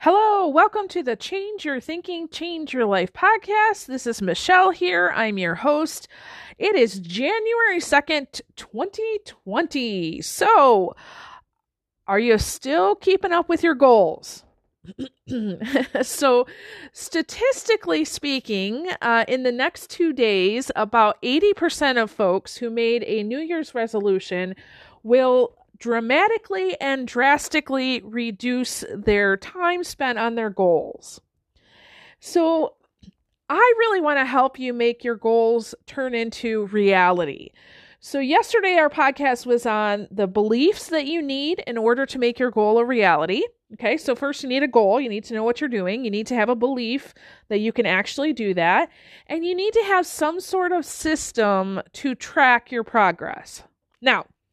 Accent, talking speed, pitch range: American, 145 wpm, 225-335 Hz